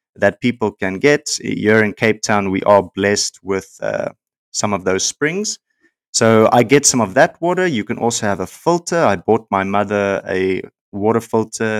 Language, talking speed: English, 190 wpm